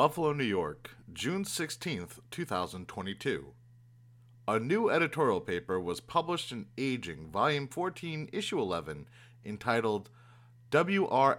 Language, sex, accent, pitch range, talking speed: English, male, American, 105-130 Hz, 105 wpm